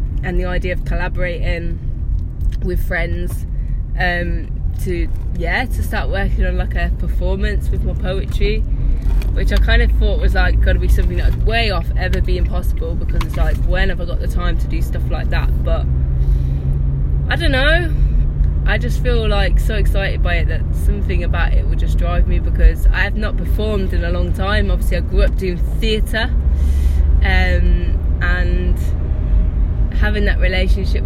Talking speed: 170 wpm